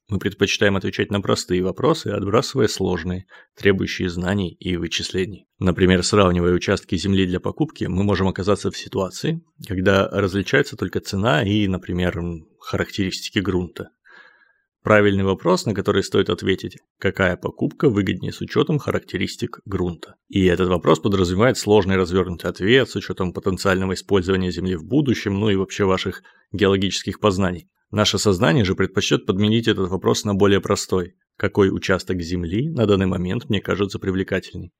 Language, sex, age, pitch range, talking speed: Russian, male, 30-49, 90-100 Hz, 145 wpm